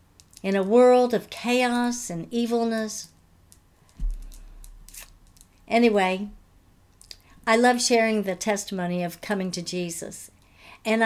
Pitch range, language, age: 185-255 Hz, English, 60-79